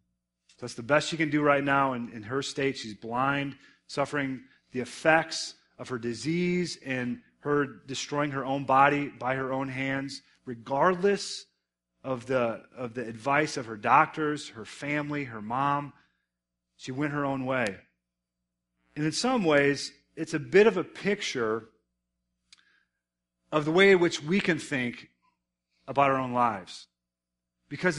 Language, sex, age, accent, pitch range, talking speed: English, male, 40-59, American, 125-165 Hz, 150 wpm